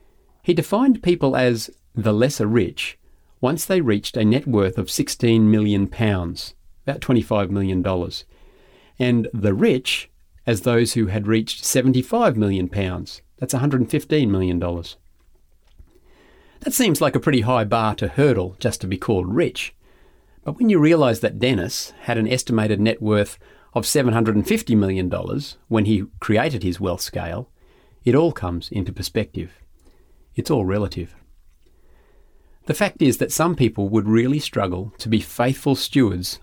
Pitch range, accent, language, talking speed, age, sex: 95-125 Hz, Australian, English, 145 wpm, 40-59, male